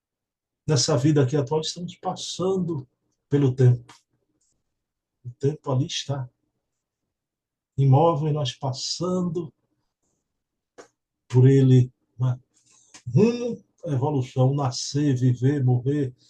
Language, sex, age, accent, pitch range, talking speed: Portuguese, male, 60-79, Brazilian, 135-190 Hz, 85 wpm